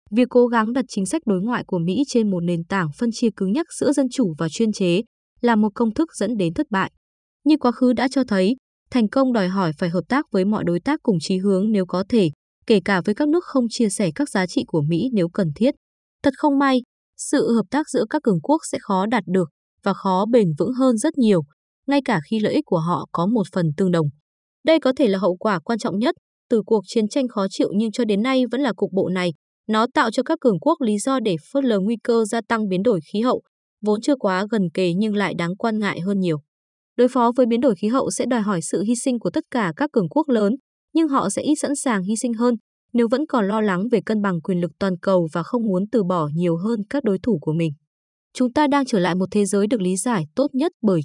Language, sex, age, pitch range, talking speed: Vietnamese, female, 20-39, 185-255 Hz, 265 wpm